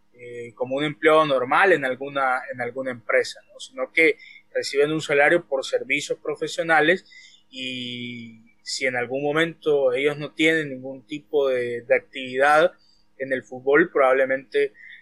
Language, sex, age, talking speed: Spanish, male, 20-39, 140 wpm